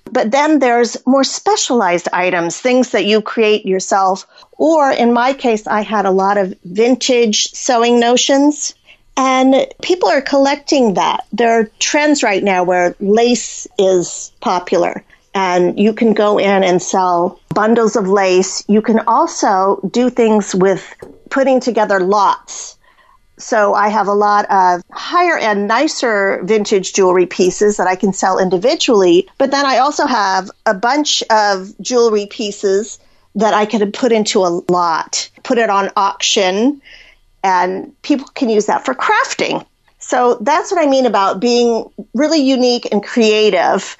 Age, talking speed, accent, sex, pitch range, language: 40-59, 155 wpm, American, female, 200-265 Hz, English